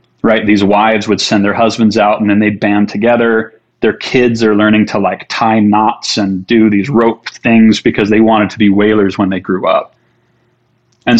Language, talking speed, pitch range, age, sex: English, 200 wpm, 105-115 Hz, 30-49, male